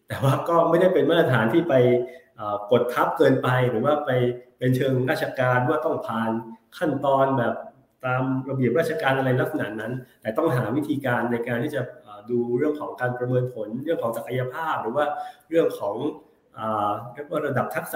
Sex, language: male, Thai